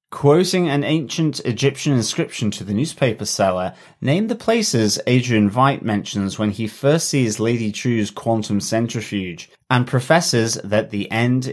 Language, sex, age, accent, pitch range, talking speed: English, male, 30-49, British, 105-135 Hz, 145 wpm